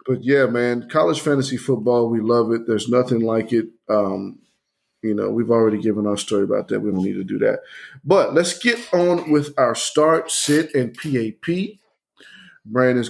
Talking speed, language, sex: 185 wpm, English, male